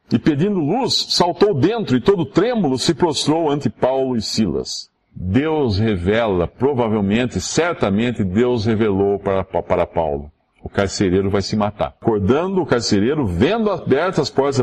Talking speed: 145 wpm